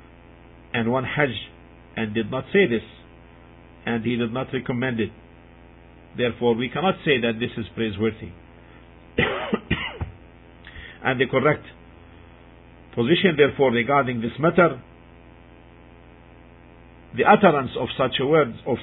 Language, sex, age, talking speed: English, male, 50-69, 120 wpm